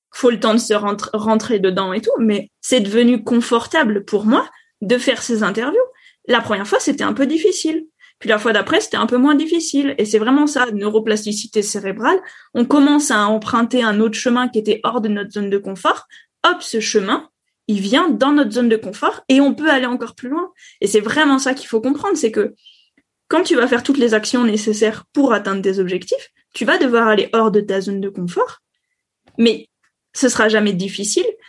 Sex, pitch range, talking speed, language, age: female, 215-280 Hz, 210 wpm, French, 20-39